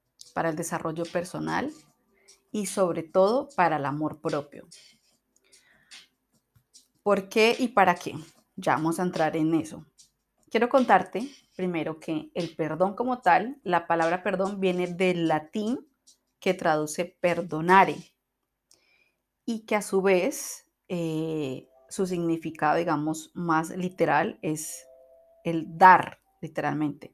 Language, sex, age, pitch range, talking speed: Spanish, female, 30-49, 155-190 Hz, 120 wpm